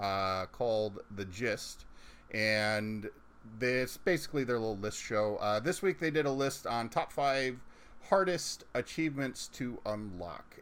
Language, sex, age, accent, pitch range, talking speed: English, male, 30-49, American, 105-145 Hz, 140 wpm